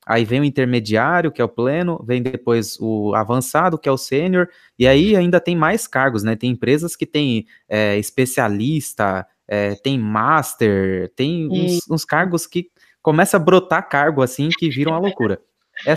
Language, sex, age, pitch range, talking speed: Portuguese, male, 20-39, 125-175 Hz, 175 wpm